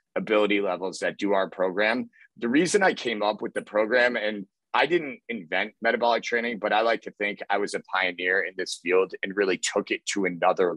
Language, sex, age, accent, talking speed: English, male, 30-49, American, 210 wpm